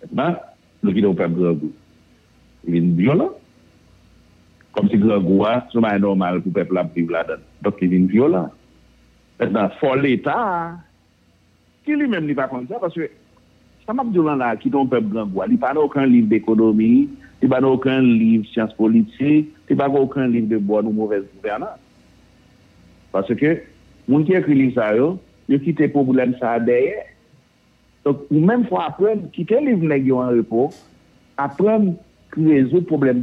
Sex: male